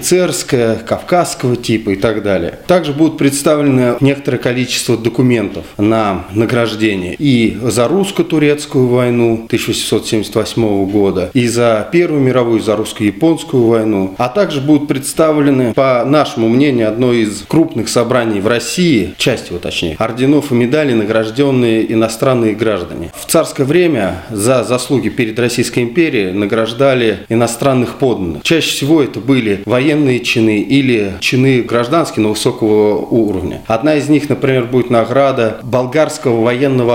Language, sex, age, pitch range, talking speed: Russian, male, 30-49, 110-140 Hz, 130 wpm